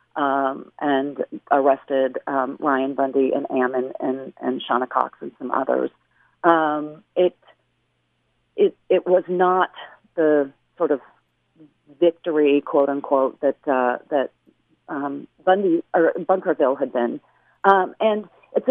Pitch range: 140-170 Hz